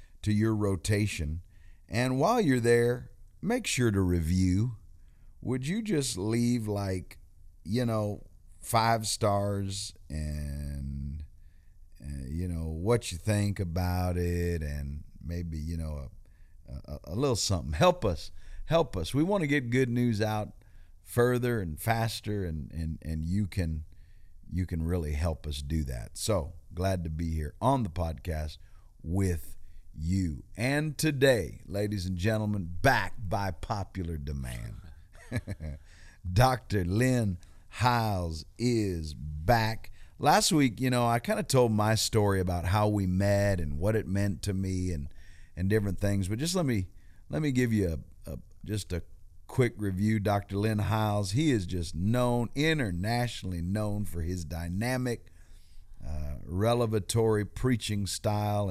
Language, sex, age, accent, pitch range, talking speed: English, male, 50-69, American, 85-110 Hz, 145 wpm